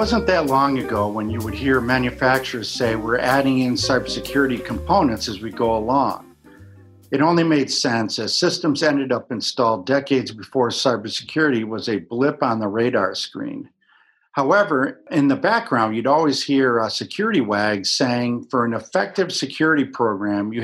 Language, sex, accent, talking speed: English, male, American, 160 wpm